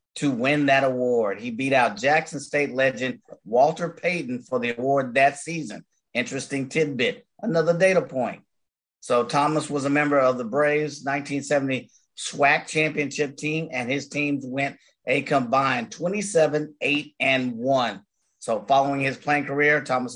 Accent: American